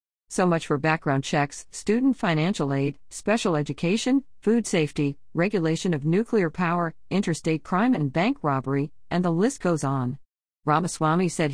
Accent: American